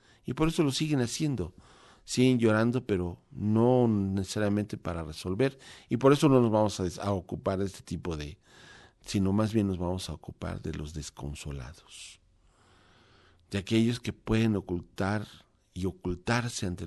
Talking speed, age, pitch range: 155 wpm, 50-69, 90-120 Hz